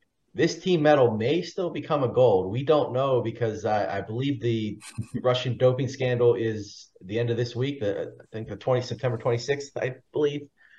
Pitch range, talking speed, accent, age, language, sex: 105-130 Hz, 195 wpm, American, 30-49, English, male